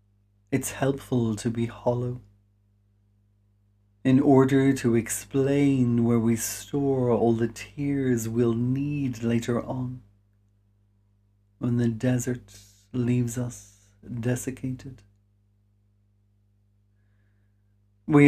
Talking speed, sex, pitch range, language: 85 wpm, male, 100-140 Hz, English